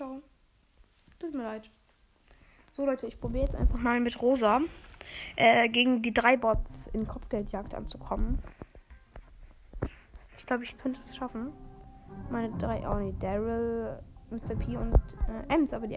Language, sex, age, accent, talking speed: German, female, 20-39, German, 145 wpm